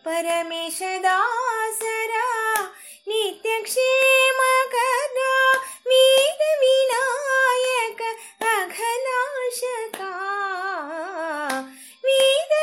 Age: 20-39